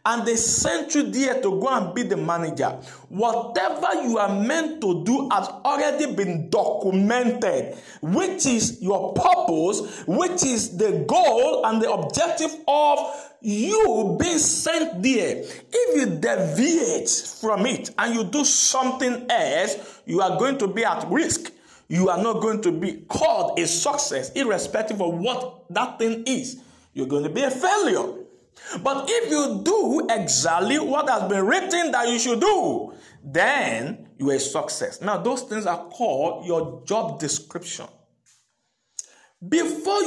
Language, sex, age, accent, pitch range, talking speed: English, male, 50-69, Nigerian, 190-285 Hz, 155 wpm